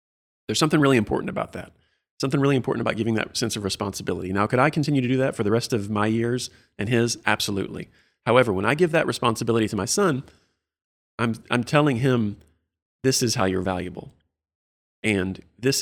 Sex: male